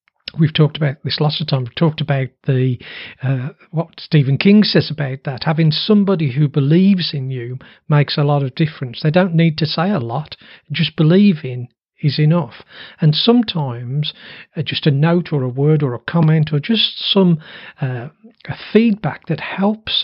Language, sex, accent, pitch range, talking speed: English, male, British, 140-180 Hz, 180 wpm